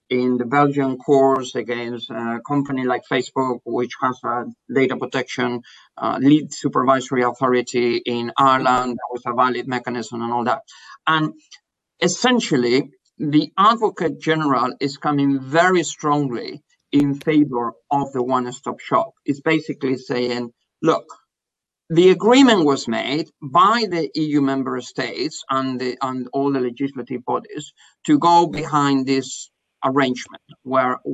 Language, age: English, 50-69